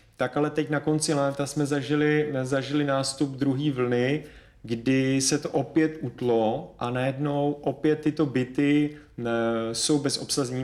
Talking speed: 135 wpm